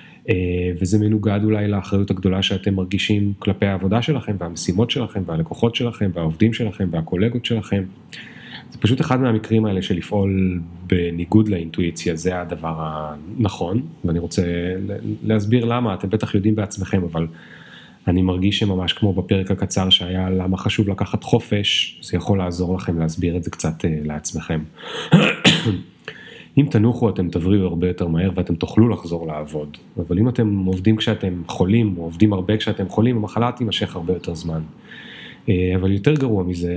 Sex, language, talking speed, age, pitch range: male, Hebrew, 145 wpm, 30-49, 90-105 Hz